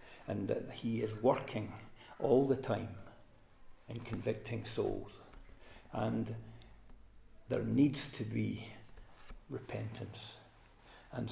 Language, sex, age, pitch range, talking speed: English, male, 60-79, 110-125 Hz, 95 wpm